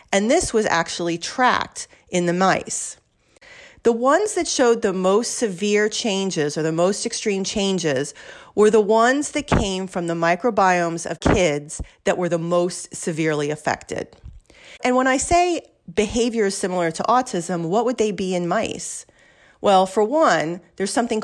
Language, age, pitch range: English, 40-59, 175-240 Hz